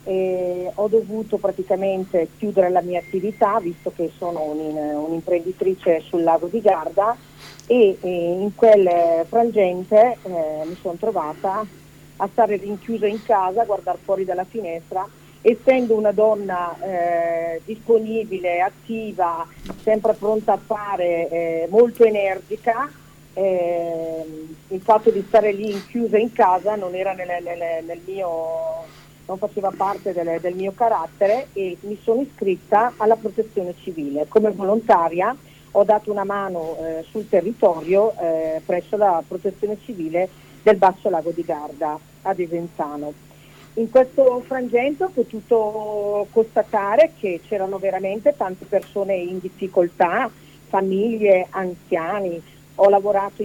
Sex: female